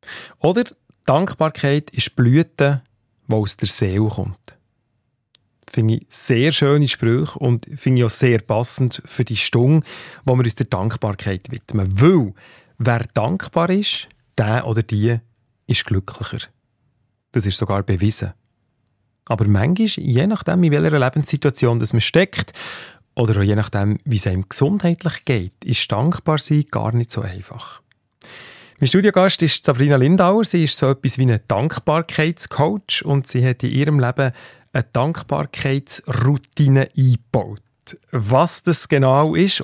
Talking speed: 140 wpm